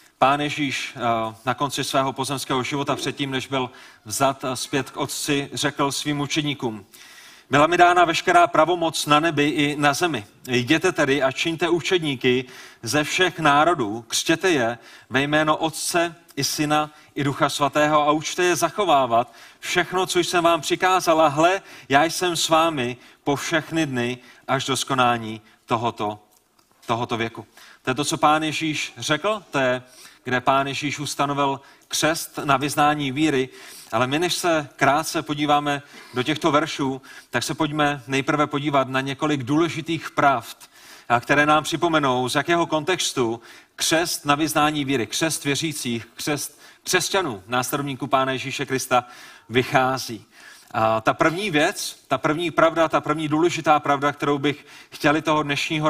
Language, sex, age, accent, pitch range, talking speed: Czech, male, 30-49, native, 130-155 Hz, 150 wpm